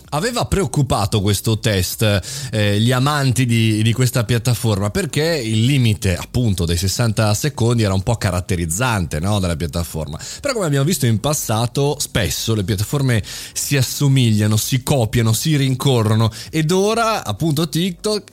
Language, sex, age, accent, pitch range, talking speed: Italian, male, 30-49, native, 105-135 Hz, 145 wpm